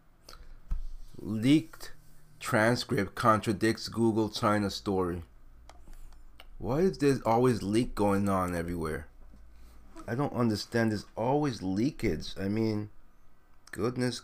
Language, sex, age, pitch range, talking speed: English, male, 30-49, 95-120 Hz, 95 wpm